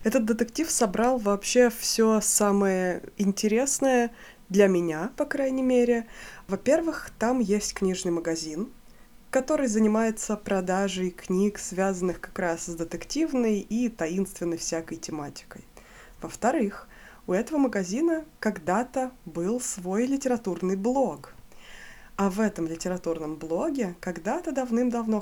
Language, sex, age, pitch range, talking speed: Russian, female, 20-39, 180-250 Hz, 110 wpm